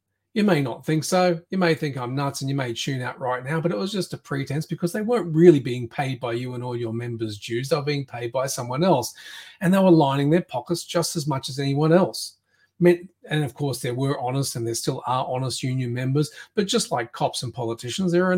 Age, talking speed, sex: 30-49, 250 wpm, male